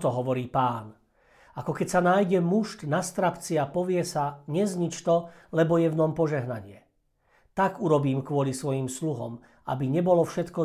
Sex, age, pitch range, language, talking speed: male, 50-69, 140-170 Hz, Slovak, 150 wpm